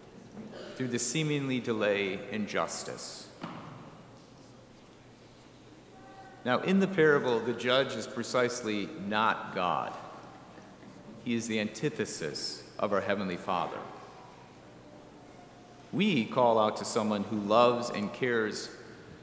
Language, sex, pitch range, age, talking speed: English, male, 110-145 Hz, 40-59, 105 wpm